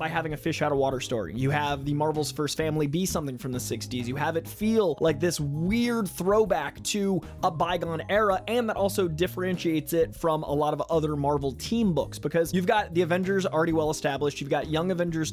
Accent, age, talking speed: American, 20-39, 215 wpm